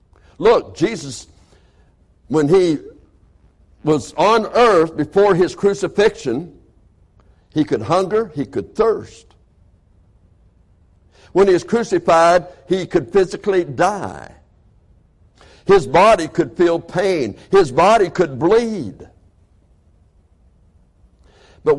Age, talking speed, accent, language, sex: 60-79, 95 wpm, American, English, male